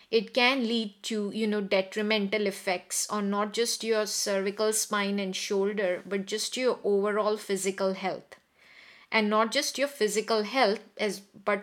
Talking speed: 155 wpm